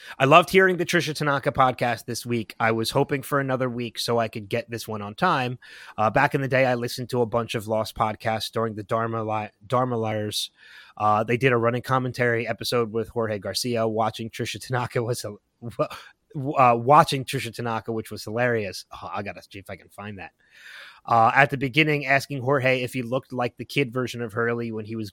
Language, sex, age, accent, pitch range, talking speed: English, male, 30-49, American, 115-140 Hz, 205 wpm